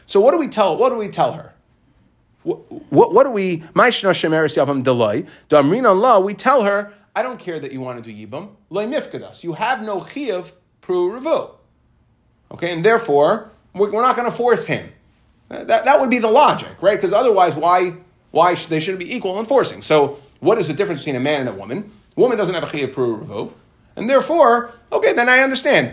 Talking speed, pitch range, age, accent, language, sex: 195 wpm, 150-215 Hz, 30-49, American, English, male